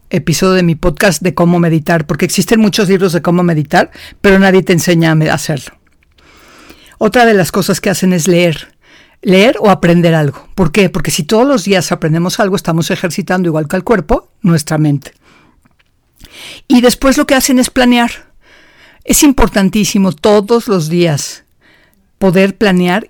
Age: 50-69